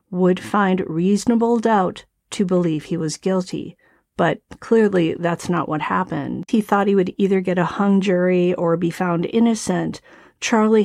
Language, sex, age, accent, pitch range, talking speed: English, female, 40-59, American, 180-210 Hz, 160 wpm